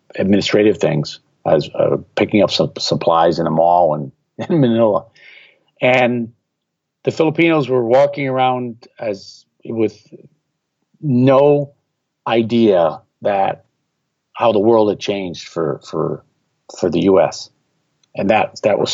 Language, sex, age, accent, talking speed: English, male, 50-69, American, 120 wpm